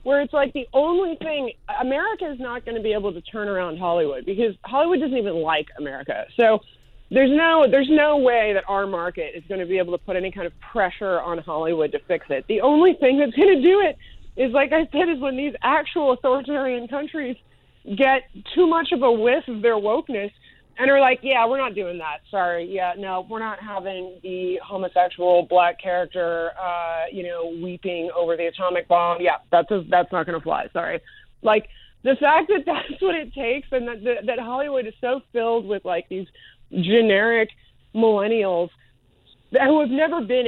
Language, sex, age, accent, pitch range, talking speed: English, female, 30-49, American, 180-265 Hz, 200 wpm